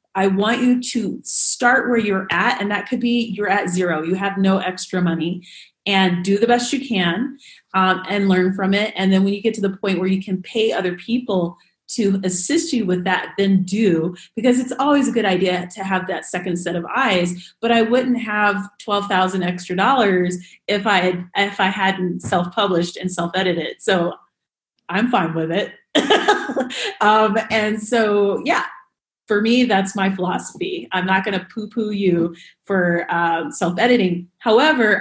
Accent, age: American, 30-49